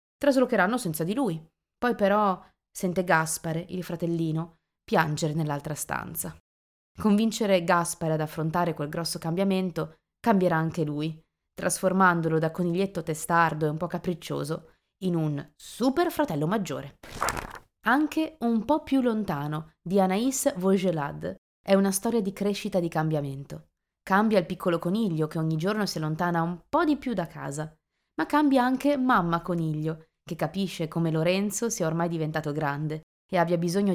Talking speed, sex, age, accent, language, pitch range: 145 wpm, female, 20-39, native, Italian, 160-205 Hz